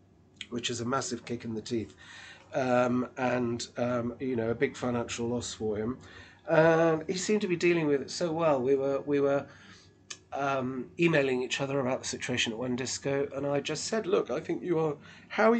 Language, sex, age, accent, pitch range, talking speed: English, male, 30-49, British, 115-150 Hz, 210 wpm